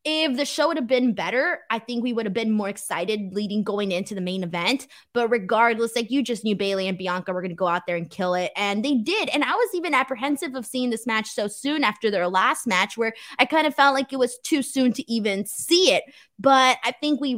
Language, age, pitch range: English, 20-39, 205-265 Hz